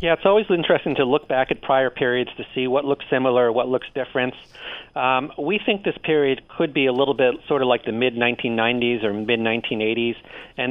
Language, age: English, 40-59